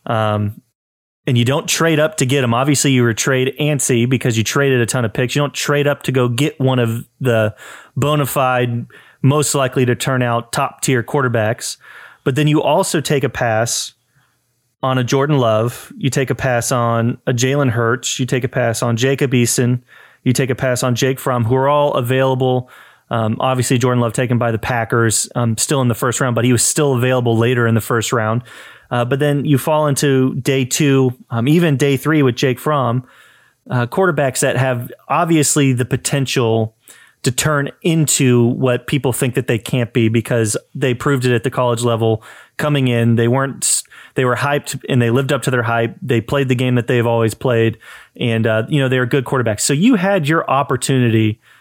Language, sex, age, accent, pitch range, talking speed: English, male, 30-49, American, 120-140 Hz, 205 wpm